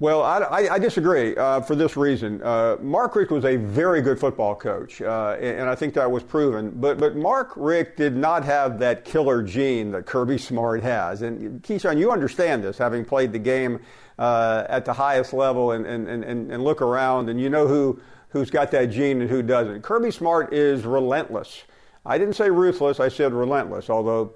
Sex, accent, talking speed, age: male, American, 205 wpm, 50-69